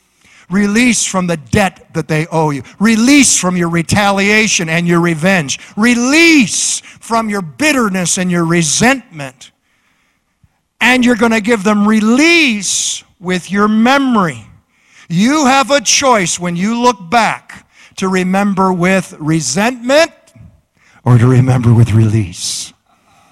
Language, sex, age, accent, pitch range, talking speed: English, male, 50-69, American, 175-230 Hz, 125 wpm